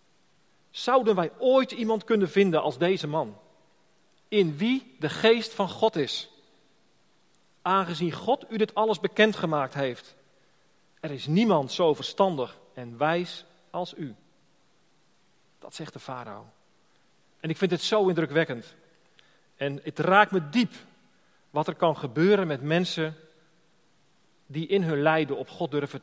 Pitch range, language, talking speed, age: 140-185 Hz, Dutch, 140 wpm, 40-59